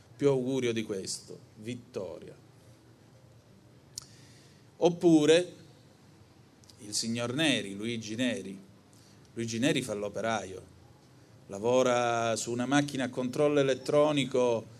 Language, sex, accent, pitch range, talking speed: Italian, male, native, 115-145 Hz, 85 wpm